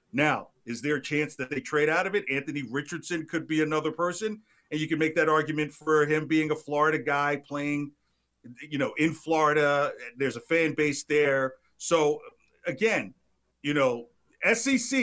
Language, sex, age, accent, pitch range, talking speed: English, male, 50-69, American, 135-185 Hz, 175 wpm